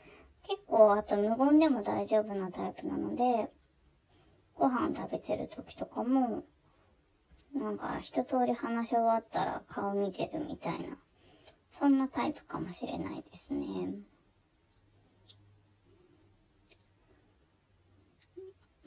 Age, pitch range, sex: 20-39, 185-275 Hz, male